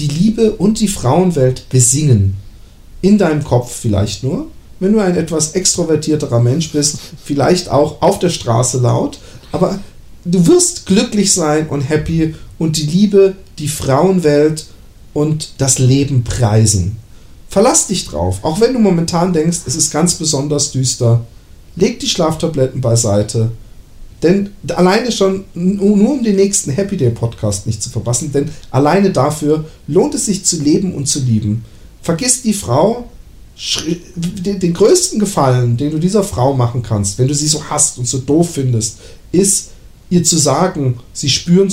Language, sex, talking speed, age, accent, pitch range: German, male, 150 wpm, 40-59, German, 125-180 Hz